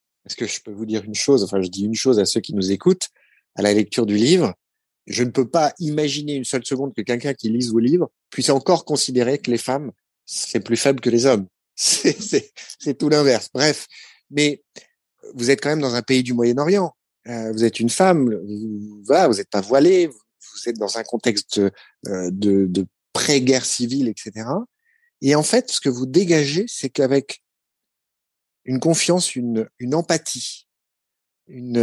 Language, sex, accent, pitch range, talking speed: French, male, French, 110-150 Hz, 190 wpm